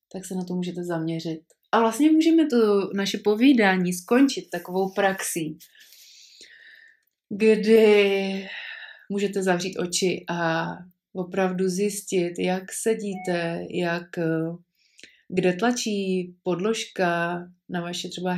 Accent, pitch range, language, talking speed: native, 180-220 Hz, Czech, 100 wpm